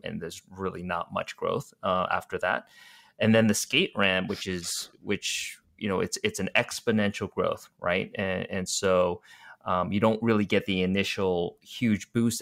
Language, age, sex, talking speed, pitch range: English, 30-49, male, 180 wpm, 90-110 Hz